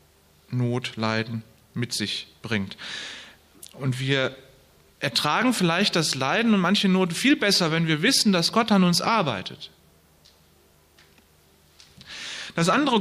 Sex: male